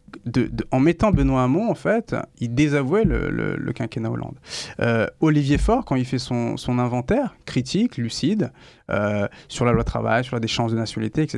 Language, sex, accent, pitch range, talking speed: French, male, French, 120-150 Hz, 200 wpm